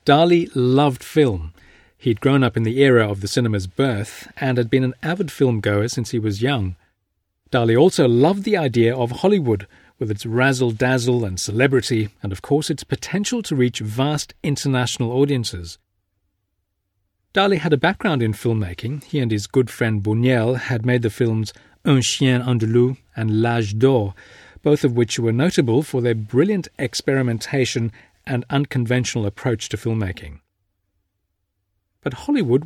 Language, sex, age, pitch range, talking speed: English, male, 40-59, 100-135 Hz, 155 wpm